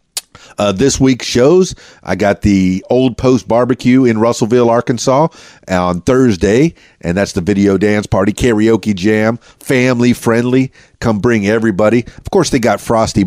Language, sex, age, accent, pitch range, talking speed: English, male, 40-59, American, 95-125 Hz, 150 wpm